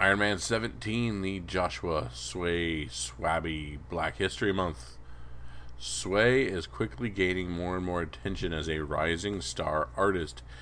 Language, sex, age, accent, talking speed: English, male, 40-59, American, 130 wpm